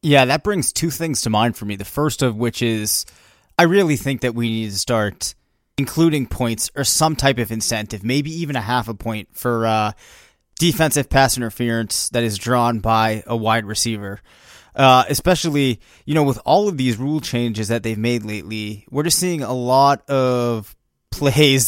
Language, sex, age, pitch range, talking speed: English, male, 20-39, 115-140 Hz, 190 wpm